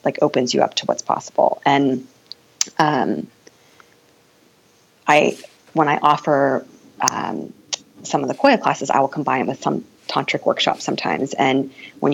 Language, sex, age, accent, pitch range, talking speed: English, female, 20-39, American, 130-155 Hz, 145 wpm